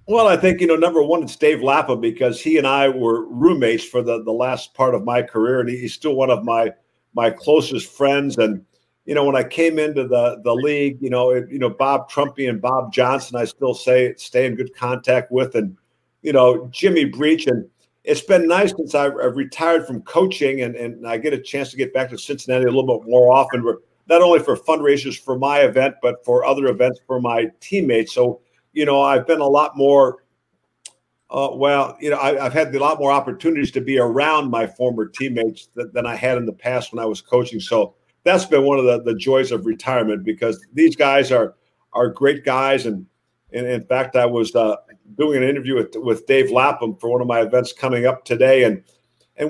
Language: English